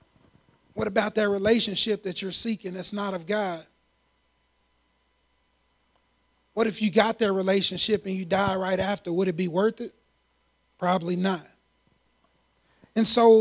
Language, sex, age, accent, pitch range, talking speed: English, male, 30-49, American, 195-250 Hz, 140 wpm